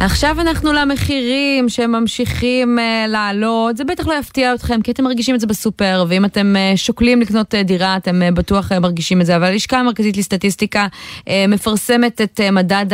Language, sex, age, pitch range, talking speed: Hebrew, female, 20-39, 185-235 Hz, 155 wpm